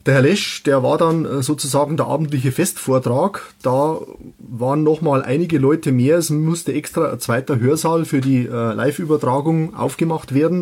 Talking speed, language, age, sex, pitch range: 155 wpm, German, 30-49, male, 130-155 Hz